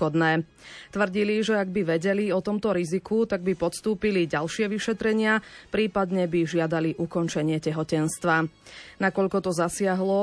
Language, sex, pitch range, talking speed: Slovak, female, 170-210 Hz, 125 wpm